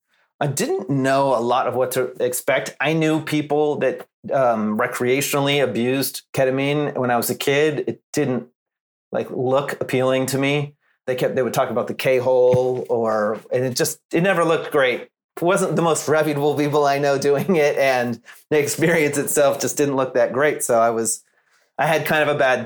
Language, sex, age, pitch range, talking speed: English, male, 30-49, 125-150 Hz, 195 wpm